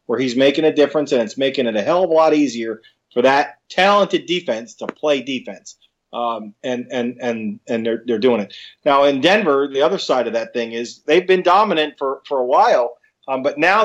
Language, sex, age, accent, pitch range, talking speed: English, male, 40-59, American, 120-155 Hz, 220 wpm